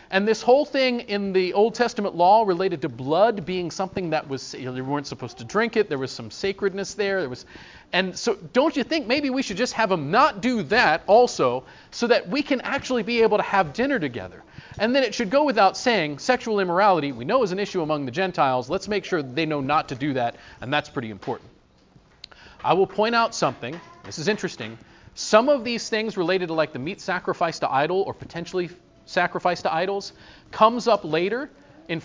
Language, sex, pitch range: English, male, 155-220 Hz